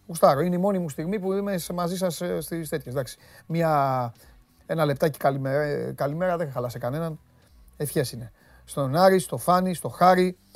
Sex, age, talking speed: male, 30-49, 170 wpm